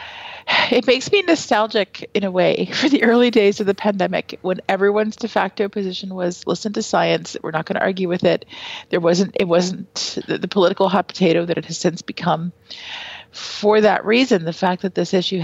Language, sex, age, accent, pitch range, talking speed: English, female, 40-59, American, 170-205 Hz, 200 wpm